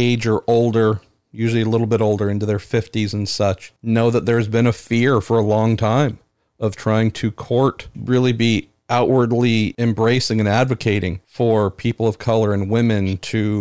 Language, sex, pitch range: English, male, 105-120 Hz